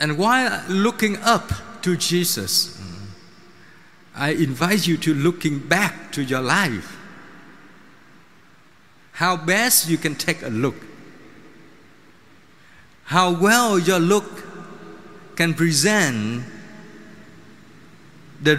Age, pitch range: 50-69, 155-205 Hz